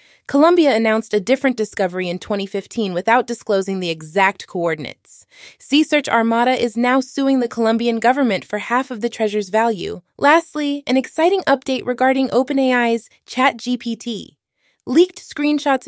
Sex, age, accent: female, 20-39, American